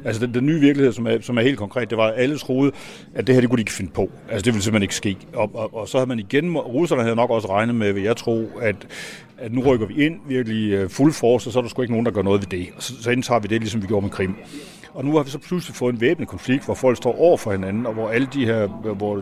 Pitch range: 105-125 Hz